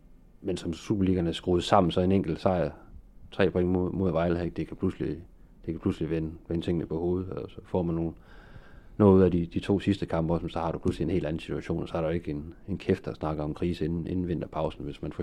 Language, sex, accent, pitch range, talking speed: Danish, male, native, 80-90 Hz, 250 wpm